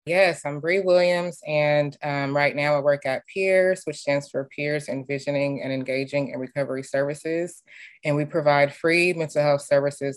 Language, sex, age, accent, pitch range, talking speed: English, female, 20-39, American, 125-145 Hz, 170 wpm